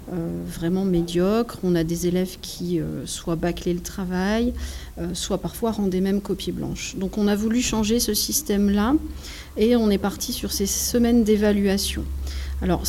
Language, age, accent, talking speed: French, 40-59, French, 170 wpm